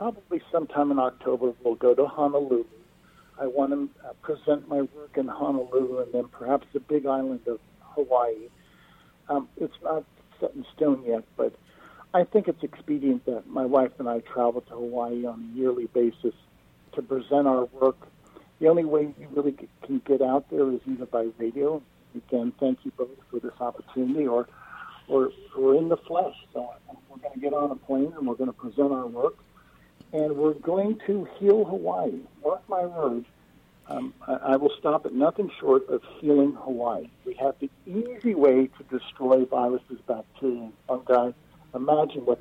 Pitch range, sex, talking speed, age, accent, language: 125-150 Hz, male, 180 wpm, 50-69, American, English